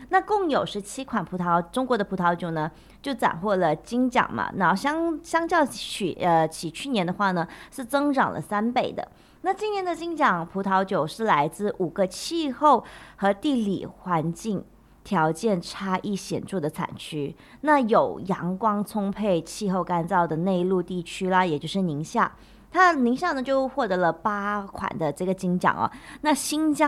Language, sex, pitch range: English, female, 185-270 Hz